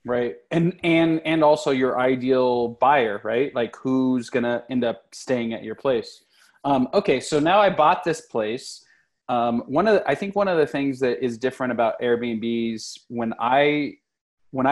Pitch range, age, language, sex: 120-150 Hz, 20-39, English, male